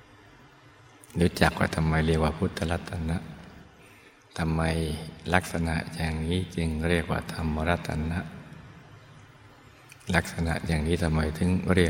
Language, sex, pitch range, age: Thai, male, 80-95 Hz, 60-79